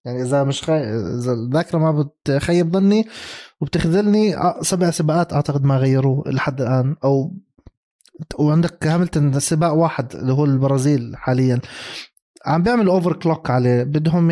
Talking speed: 135 wpm